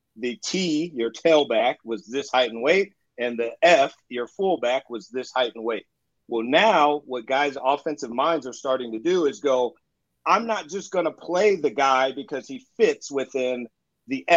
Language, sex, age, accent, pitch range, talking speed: English, male, 40-59, American, 125-170 Hz, 185 wpm